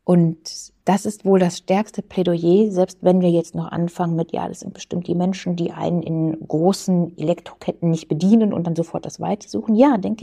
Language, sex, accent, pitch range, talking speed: German, female, German, 175-230 Hz, 200 wpm